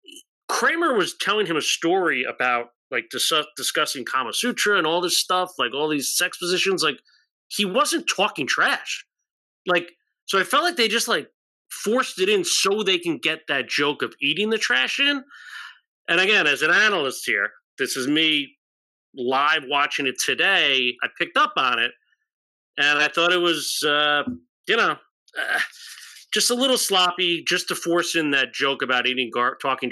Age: 30-49